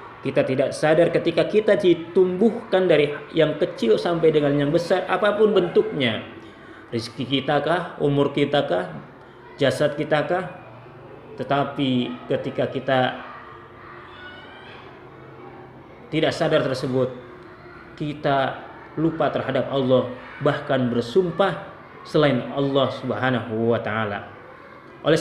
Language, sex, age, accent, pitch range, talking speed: Indonesian, male, 20-39, native, 125-160 Hz, 100 wpm